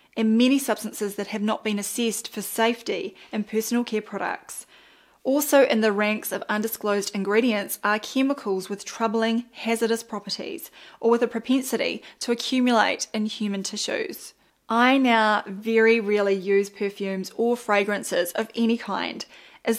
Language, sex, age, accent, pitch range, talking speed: English, female, 20-39, Australian, 205-240 Hz, 145 wpm